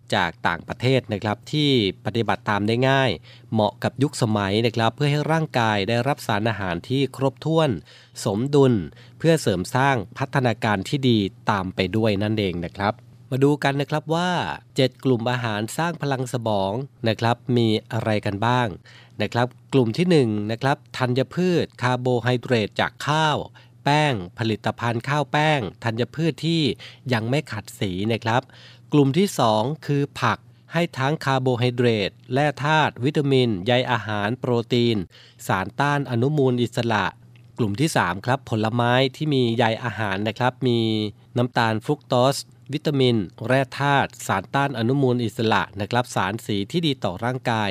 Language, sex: Thai, male